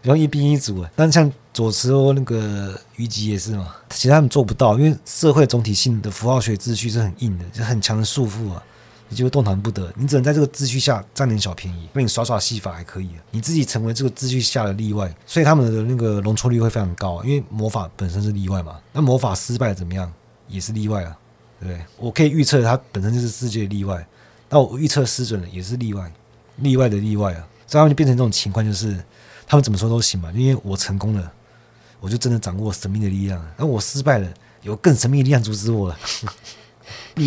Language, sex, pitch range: Chinese, male, 100-125 Hz